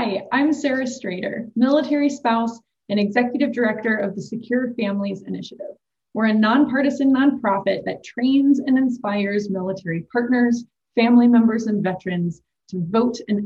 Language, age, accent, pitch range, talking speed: English, 20-39, American, 190-260 Hz, 140 wpm